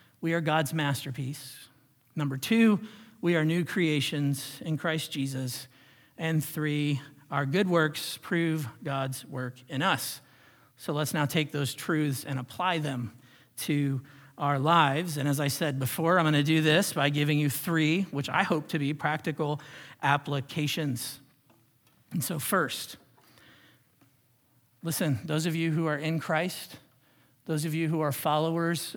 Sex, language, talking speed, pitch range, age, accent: male, English, 150 wpm, 130-155 Hz, 50-69, American